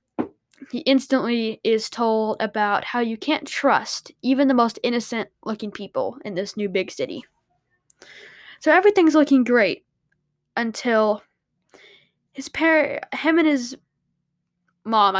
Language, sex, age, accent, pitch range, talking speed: English, female, 10-29, American, 220-280 Hz, 120 wpm